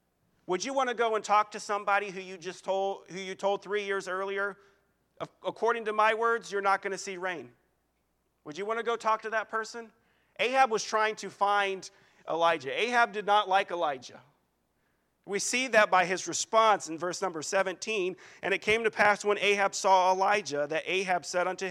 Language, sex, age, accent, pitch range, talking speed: English, male, 40-59, American, 150-210 Hz, 200 wpm